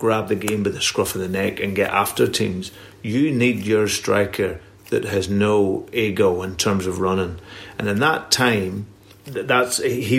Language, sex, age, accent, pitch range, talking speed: English, male, 40-59, British, 100-125 Hz, 185 wpm